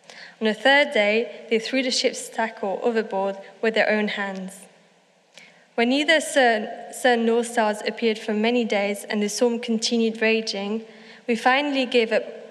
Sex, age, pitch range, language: female, 20-39, 210-245 Hz, English